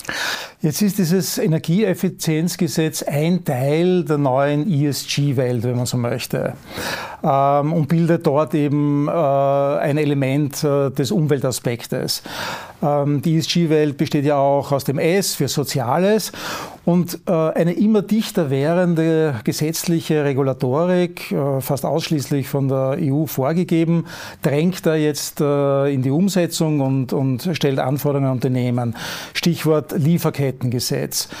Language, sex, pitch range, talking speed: German, male, 140-170 Hz, 110 wpm